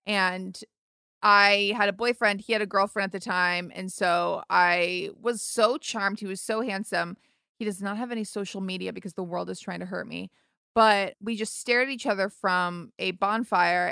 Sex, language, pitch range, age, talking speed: female, English, 180-215 Hz, 20-39, 205 wpm